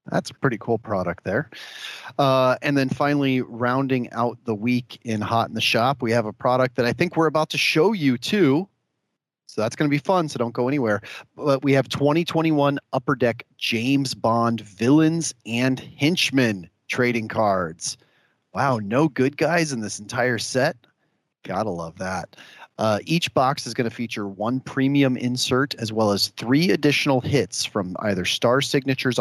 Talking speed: 175 wpm